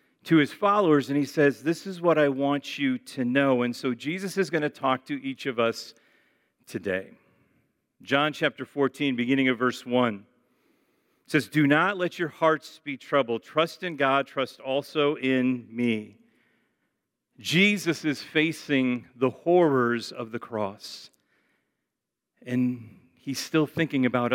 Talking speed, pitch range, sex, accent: 150 wpm, 130-165 Hz, male, American